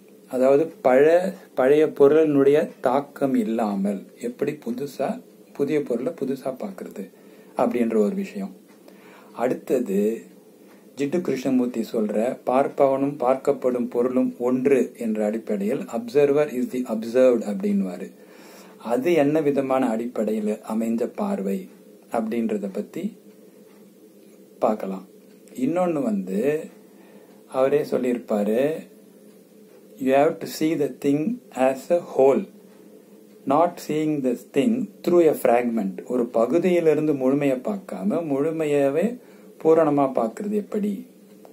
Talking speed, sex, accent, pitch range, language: 90 wpm, male, Indian, 120-165 Hz, English